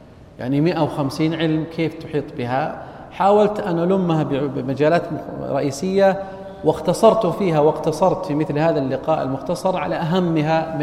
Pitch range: 145-195 Hz